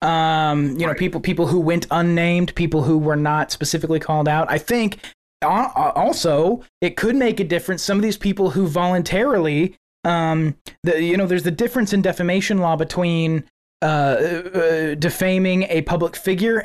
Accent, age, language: American, 20-39, English